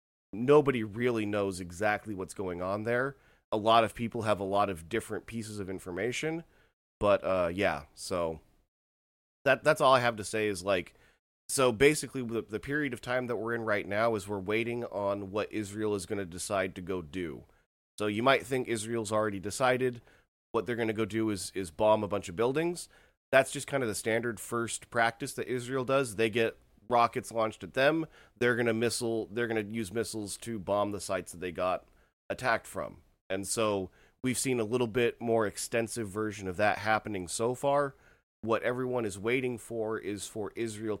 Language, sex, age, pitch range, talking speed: English, male, 30-49, 100-120 Hz, 195 wpm